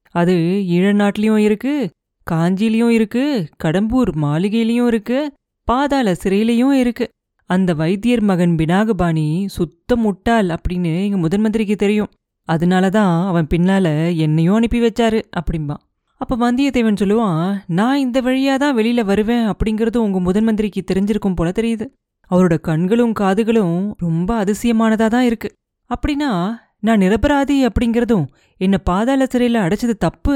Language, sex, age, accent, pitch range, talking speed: Tamil, female, 30-49, native, 175-235 Hz, 115 wpm